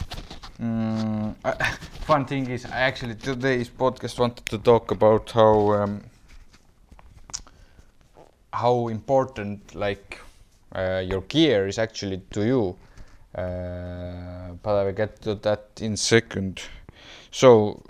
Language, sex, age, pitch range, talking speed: English, male, 20-39, 100-115 Hz, 120 wpm